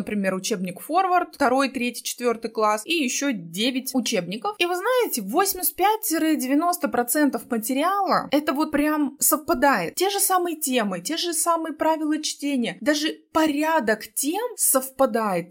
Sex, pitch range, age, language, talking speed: female, 210-280 Hz, 20-39, Russian, 130 wpm